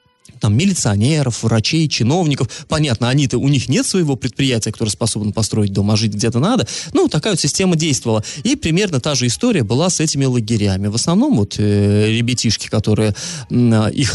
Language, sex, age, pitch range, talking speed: Russian, male, 30-49, 115-155 Hz, 165 wpm